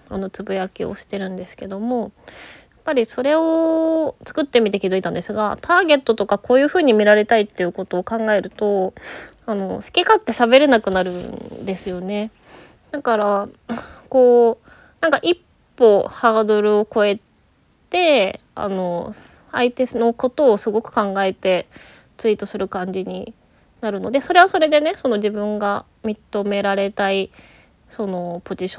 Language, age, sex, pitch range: Japanese, 20-39, female, 190-245 Hz